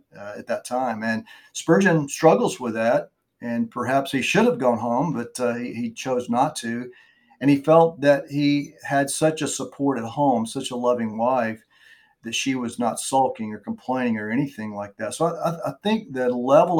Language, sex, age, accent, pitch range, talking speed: English, male, 50-69, American, 115-155 Hz, 200 wpm